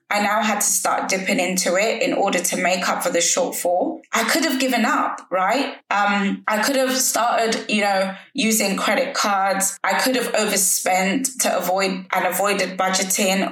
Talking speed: 180 wpm